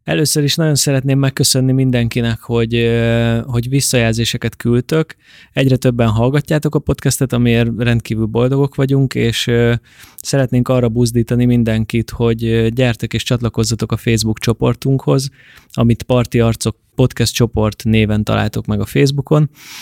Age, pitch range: 20-39, 110-125 Hz